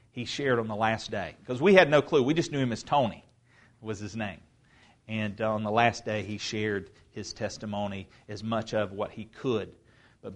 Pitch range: 110-130 Hz